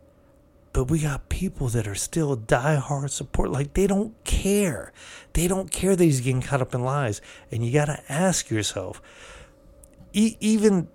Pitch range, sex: 110-150 Hz, male